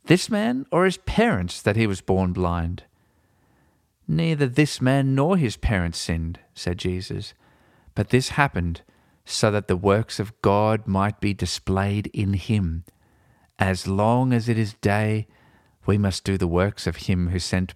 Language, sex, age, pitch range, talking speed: English, male, 40-59, 95-120 Hz, 160 wpm